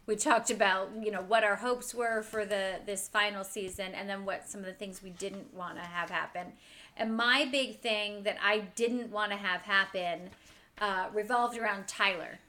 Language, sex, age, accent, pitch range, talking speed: English, female, 30-49, American, 190-235 Hz, 200 wpm